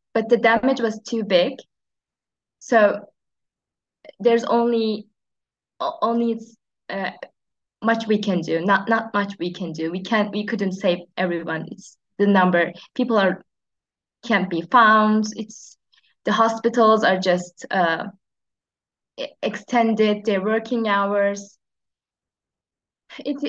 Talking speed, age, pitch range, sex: 120 wpm, 20-39, 180-225 Hz, female